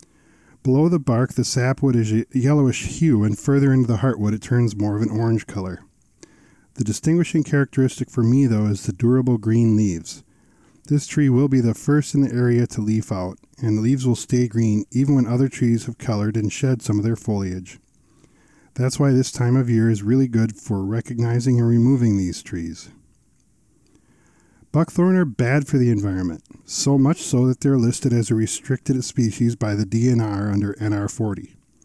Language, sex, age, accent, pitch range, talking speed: English, male, 40-59, American, 110-130 Hz, 185 wpm